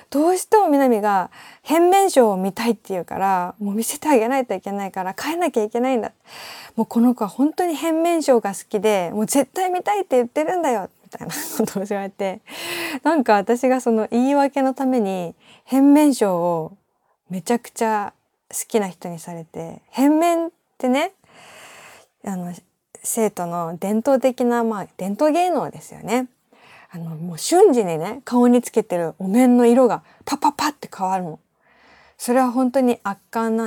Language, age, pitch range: Japanese, 20-39, 190-270 Hz